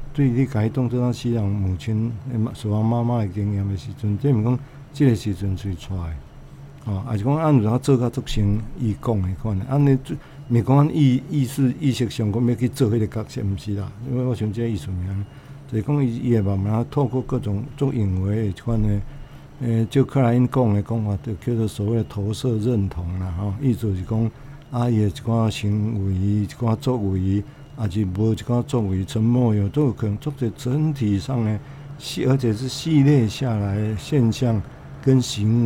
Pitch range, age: 105-130 Hz, 60-79